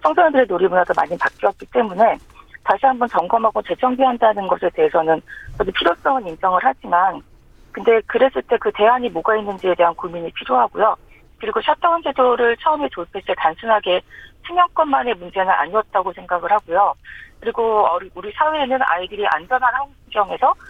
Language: Korean